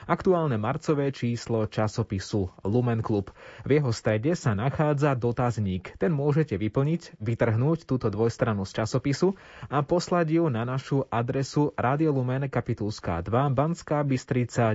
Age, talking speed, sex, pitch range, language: 20-39, 125 wpm, male, 110-140 Hz, Slovak